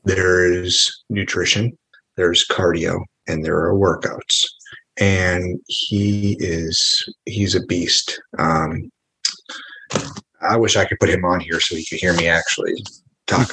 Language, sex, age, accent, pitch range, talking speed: English, male, 30-49, American, 85-105 Hz, 135 wpm